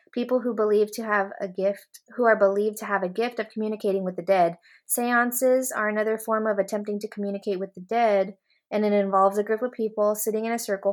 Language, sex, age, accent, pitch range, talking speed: English, female, 20-39, American, 190-220 Hz, 225 wpm